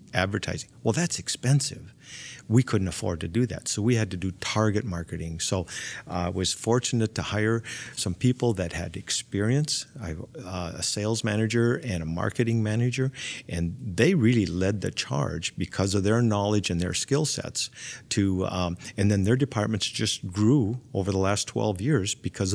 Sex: male